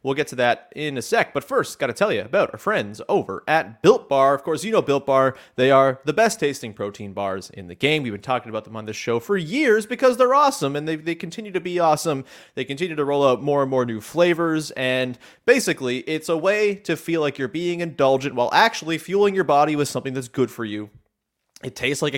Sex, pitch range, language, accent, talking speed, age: male, 120-170 Hz, English, American, 245 wpm, 30-49